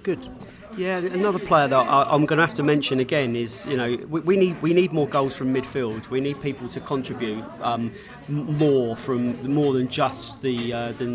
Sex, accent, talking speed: male, British, 190 wpm